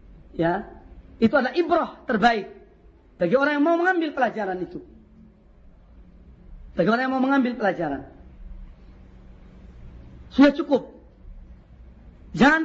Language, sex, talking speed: Indonesian, female, 100 wpm